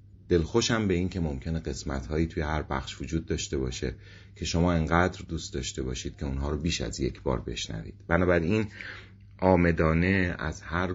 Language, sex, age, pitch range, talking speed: Persian, male, 30-49, 75-100 Hz, 165 wpm